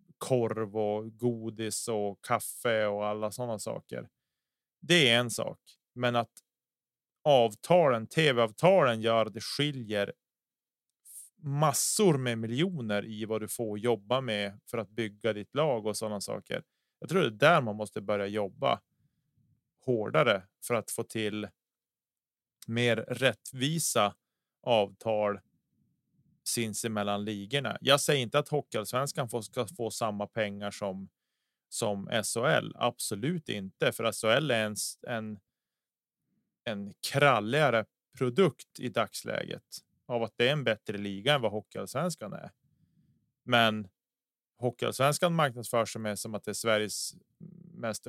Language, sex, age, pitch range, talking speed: Swedish, male, 30-49, 105-130 Hz, 125 wpm